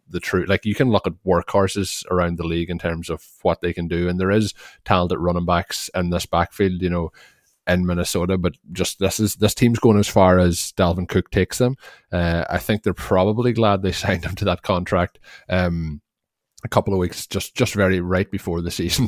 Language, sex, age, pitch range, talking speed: English, male, 20-39, 85-100 Hz, 215 wpm